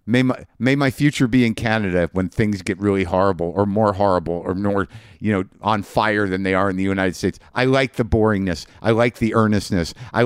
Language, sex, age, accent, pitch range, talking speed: English, male, 50-69, American, 95-120 Hz, 220 wpm